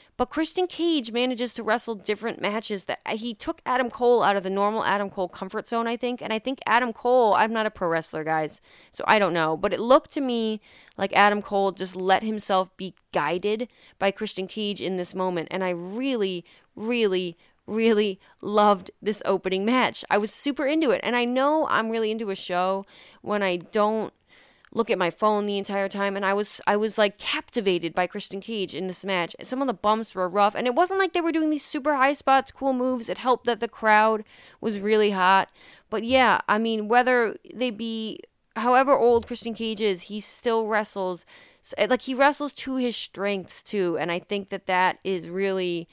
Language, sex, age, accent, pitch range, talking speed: English, female, 20-39, American, 190-240 Hz, 210 wpm